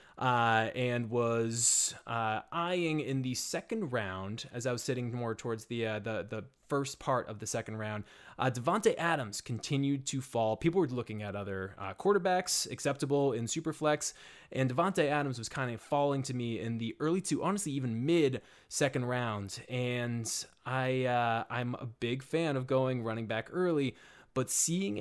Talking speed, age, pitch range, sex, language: 175 wpm, 20-39, 115-140 Hz, male, English